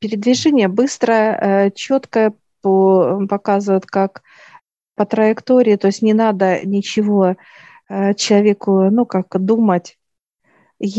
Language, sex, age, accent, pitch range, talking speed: Russian, female, 50-69, native, 190-220 Hz, 85 wpm